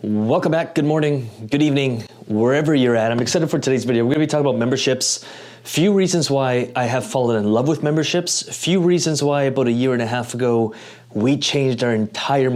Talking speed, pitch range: 210 wpm, 115-140 Hz